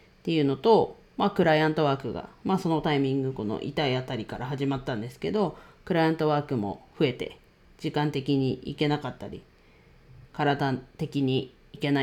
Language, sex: Japanese, female